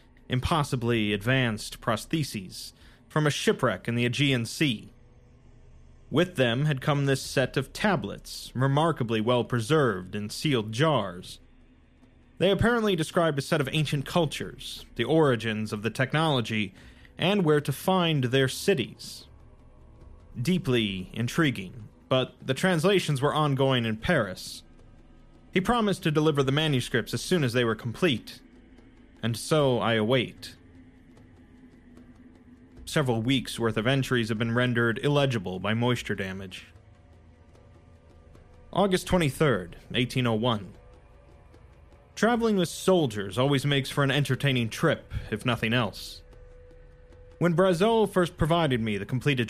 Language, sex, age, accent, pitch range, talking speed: English, male, 30-49, American, 105-150 Hz, 120 wpm